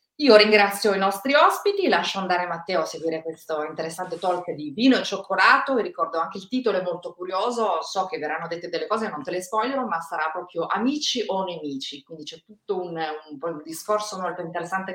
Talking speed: 205 wpm